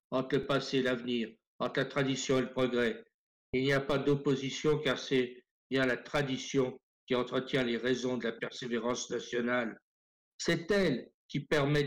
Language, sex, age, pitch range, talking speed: French, male, 60-79, 125-140 Hz, 165 wpm